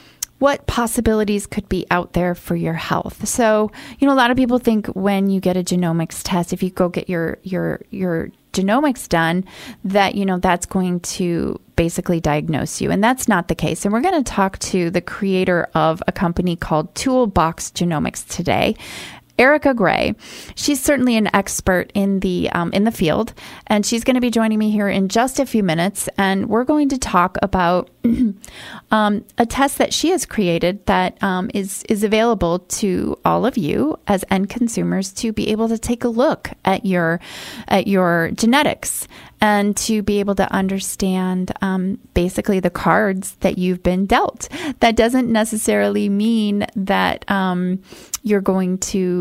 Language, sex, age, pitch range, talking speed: English, female, 30-49, 180-230 Hz, 180 wpm